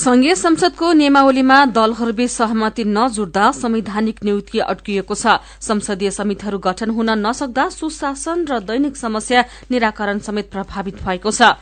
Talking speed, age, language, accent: 120 wpm, 40-59, German, Indian